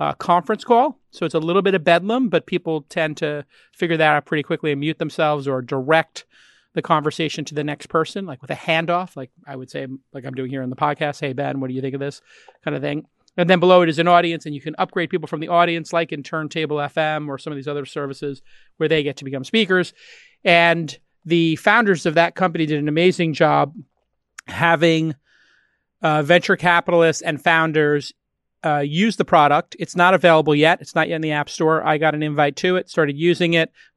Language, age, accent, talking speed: English, 40-59, American, 225 wpm